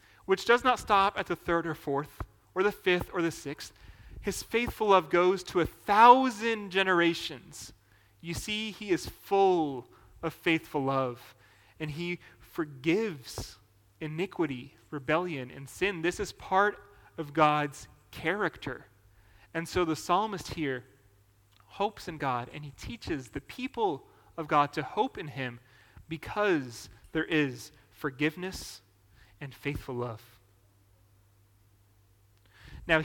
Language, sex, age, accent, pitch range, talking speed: English, male, 30-49, American, 105-160 Hz, 130 wpm